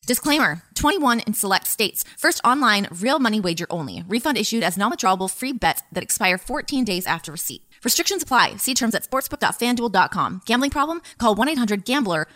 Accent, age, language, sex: American, 20-39, English, female